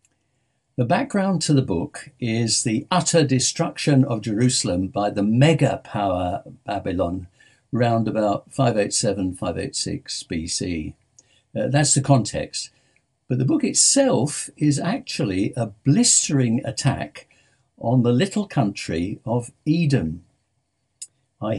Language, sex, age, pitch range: English, male, 60-79, 115-140 Hz